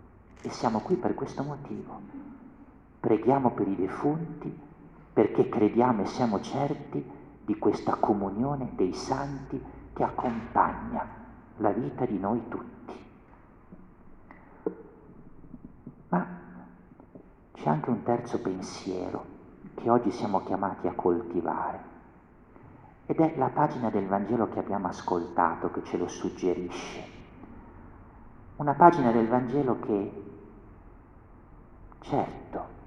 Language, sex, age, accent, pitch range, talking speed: Italian, male, 50-69, native, 105-165 Hz, 105 wpm